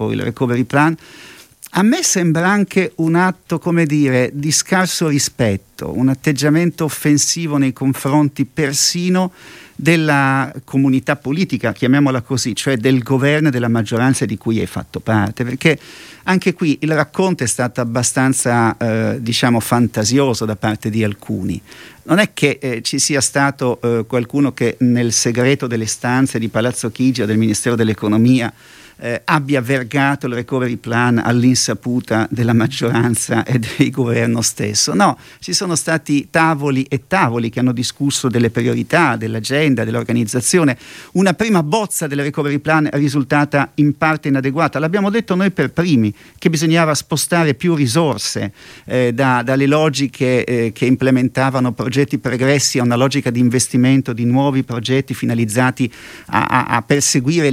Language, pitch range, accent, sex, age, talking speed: Italian, 120-150 Hz, native, male, 50-69, 145 wpm